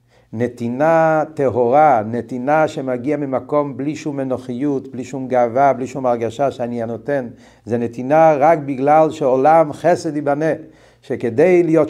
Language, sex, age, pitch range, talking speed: Hebrew, male, 50-69, 125-170 Hz, 125 wpm